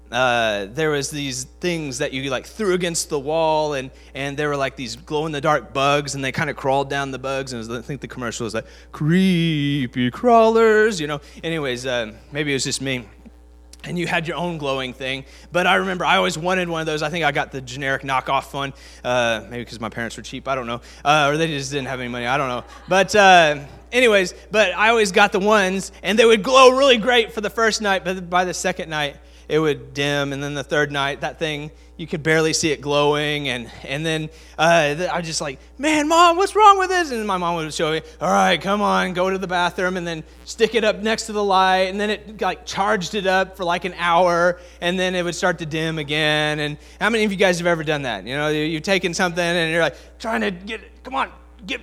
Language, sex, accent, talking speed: English, male, American, 245 wpm